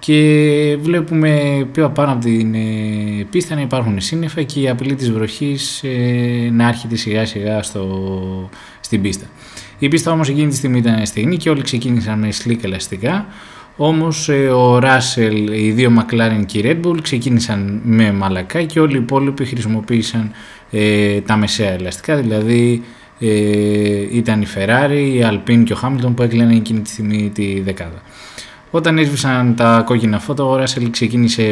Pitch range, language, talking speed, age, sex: 105-135 Hz, Greek, 155 wpm, 20-39, male